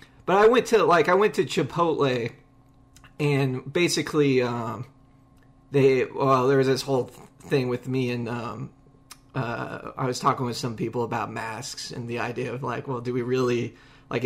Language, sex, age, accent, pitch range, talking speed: English, male, 20-39, American, 125-145 Hz, 175 wpm